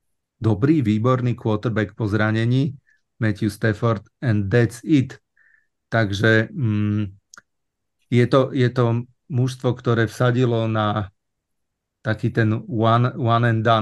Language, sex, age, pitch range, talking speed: Slovak, male, 40-59, 105-125 Hz, 100 wpm